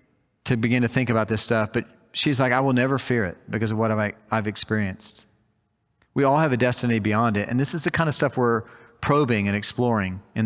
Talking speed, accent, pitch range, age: 225 wpm, American, 110-135 Hz, 40-59